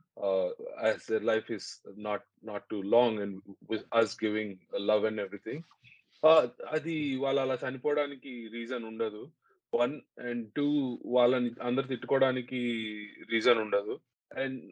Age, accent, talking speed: 20-39, native, 135 wpm